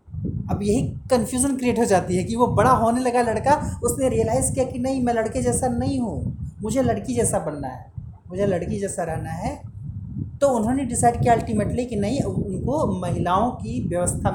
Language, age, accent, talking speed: Hindi, 30-49, native, 185 wpm